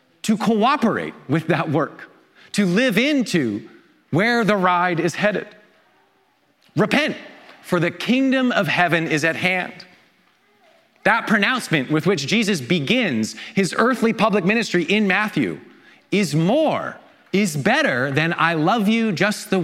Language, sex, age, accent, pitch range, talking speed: English, male, 30-49, American, 180-250 Hz, 135 wpm